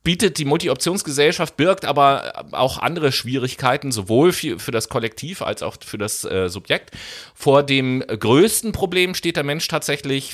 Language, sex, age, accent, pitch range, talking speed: German, male, 30-49, German, 110-145 Hz, 155 wpm